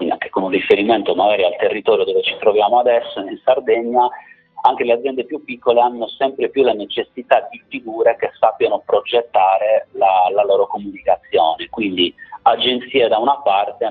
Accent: native